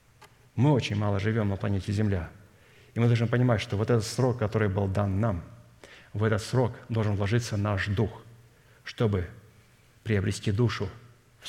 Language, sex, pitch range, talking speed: Russian, male, 105-125 Hz, 155 wpm